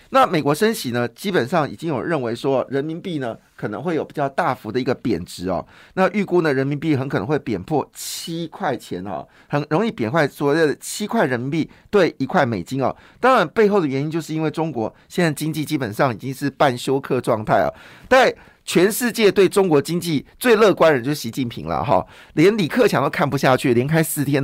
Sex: male